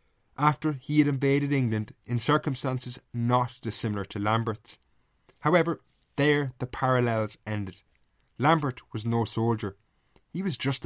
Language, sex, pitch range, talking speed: English, male, 110-140 Hz, 125 wpm